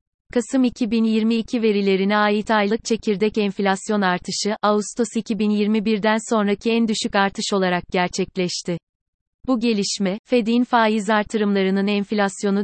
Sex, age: female, 30-49